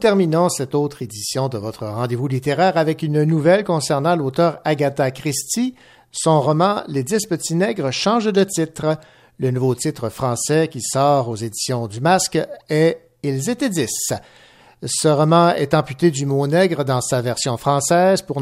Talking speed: 180 wpm